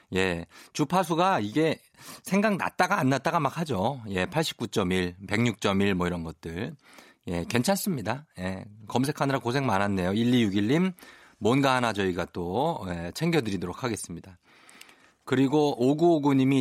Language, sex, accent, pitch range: Korean, male, native, 100-155 Hz